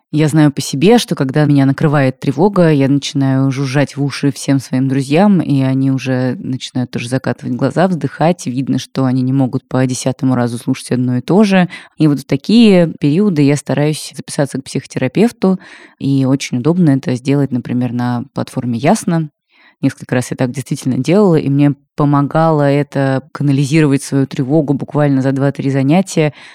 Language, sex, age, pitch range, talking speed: Russian, female, 20-39, 130-155 Hz, 165 wpm